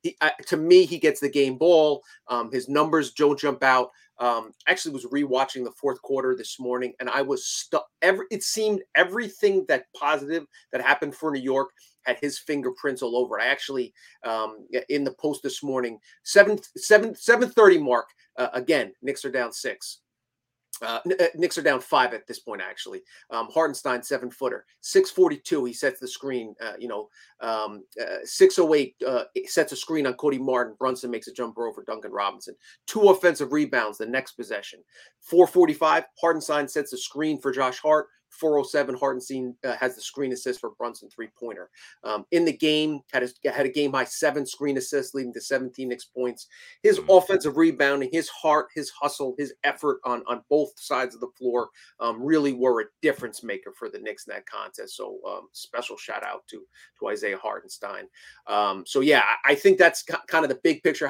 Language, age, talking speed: English, 30-49, 185 wpm